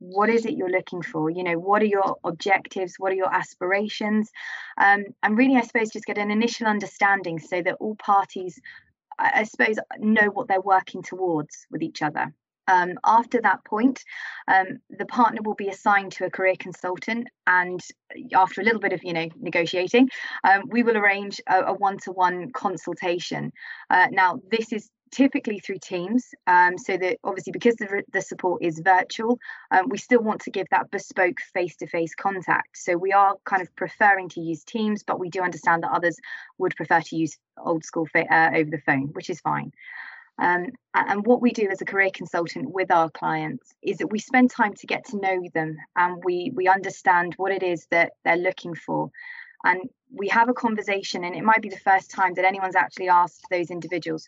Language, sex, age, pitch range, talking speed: English, female, 20-39, 180-220 Hz, 195 wpm